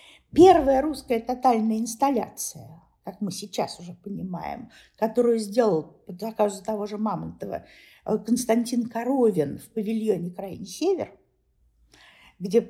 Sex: female